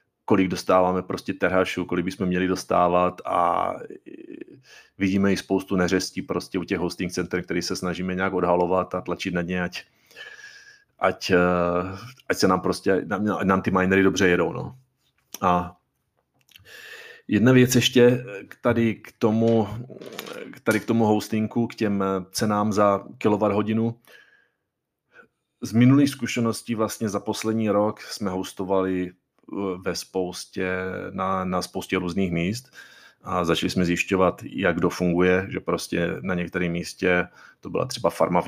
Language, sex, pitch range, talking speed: Czech, male, 90-105 Hz, 140 wpm